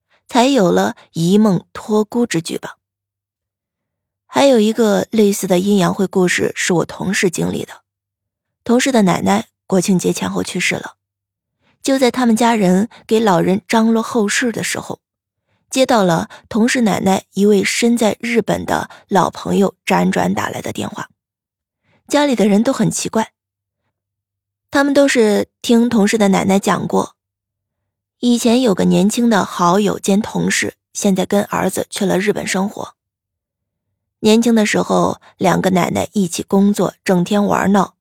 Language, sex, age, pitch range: Chinese, female, 20-39, 165-220 Hz